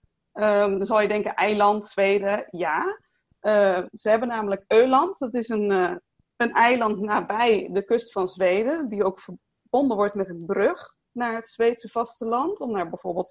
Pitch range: 200-235 Hz